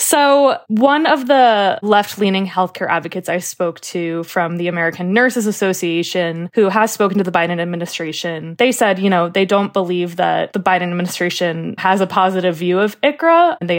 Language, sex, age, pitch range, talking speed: English, female, 20-39, 175-205 Hz, 180 wpm